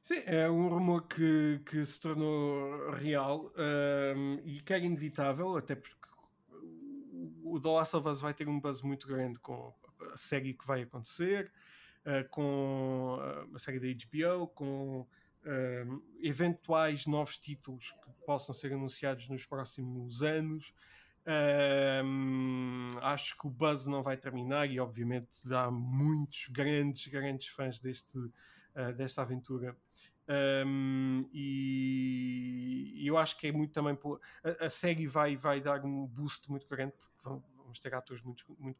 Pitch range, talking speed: 130-150 Hz, 150 wpm